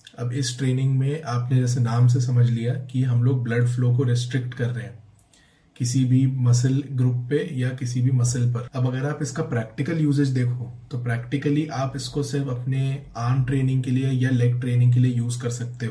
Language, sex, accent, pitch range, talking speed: Hindi, male, native, 120-130 Hz, 205 wpm